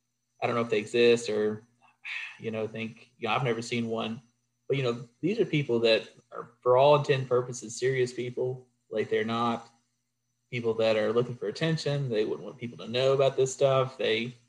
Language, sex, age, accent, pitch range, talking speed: English, male, 30-49, American, 115-125 Hz, 205 wpm